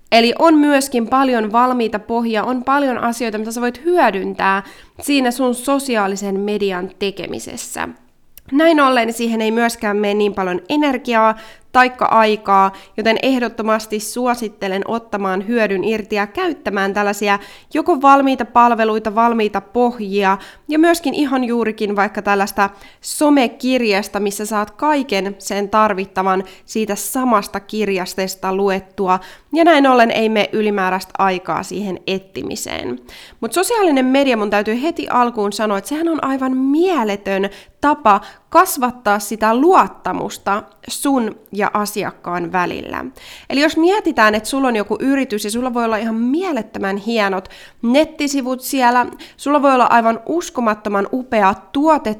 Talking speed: 130 wpm